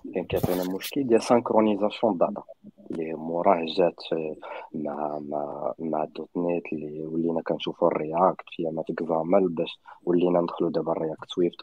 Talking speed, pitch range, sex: 145 wpm, 85-110 Hz, male